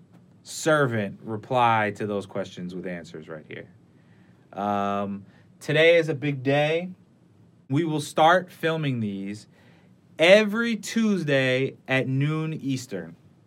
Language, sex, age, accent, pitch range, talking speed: English, male, 30-49, American, 120-160 Hz, 110 wpm